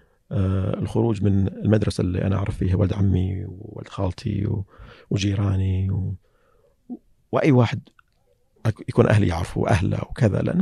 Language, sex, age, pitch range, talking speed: Arabic, male, 40-59, 100-125 Hz, 125 wpm